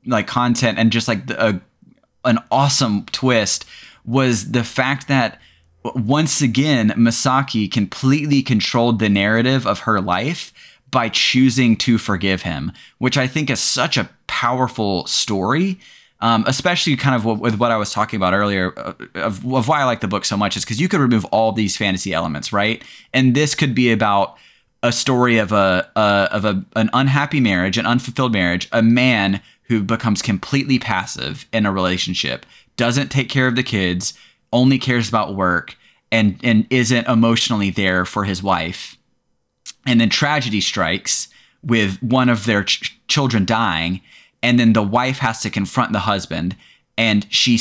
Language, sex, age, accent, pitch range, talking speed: English, male, 20-39, American, 100-130 Hz, 170 wpm